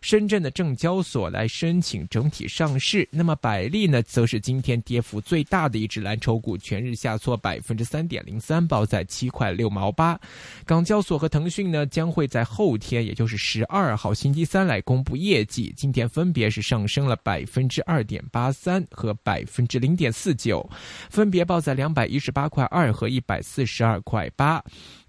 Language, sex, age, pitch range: Chinese, male, 20-39, 110-165 Hz